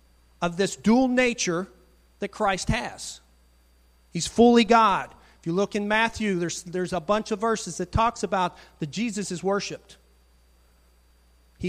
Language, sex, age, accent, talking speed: English, male, 40-59, American, 150 wpm